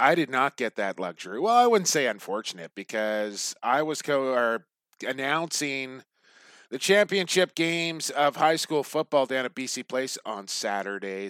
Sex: male